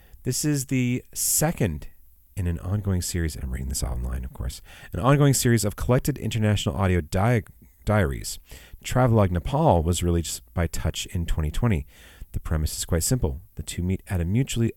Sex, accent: male, American